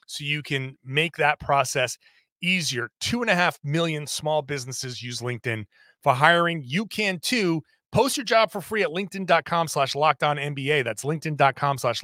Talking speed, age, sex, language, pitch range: 170 wpm, 30-49, male, English, 135-180 Hz